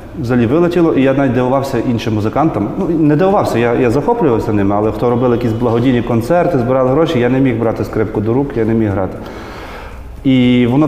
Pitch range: 110-135 Hz